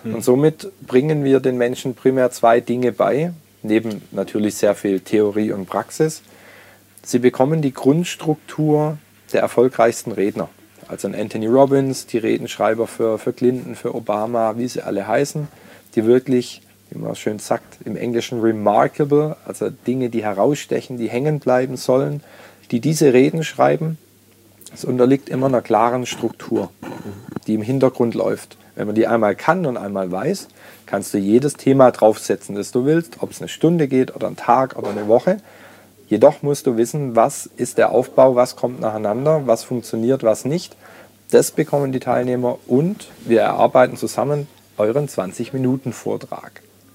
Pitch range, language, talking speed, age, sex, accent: 110-140 Hz, German, 155 wpm, 40-59, male, German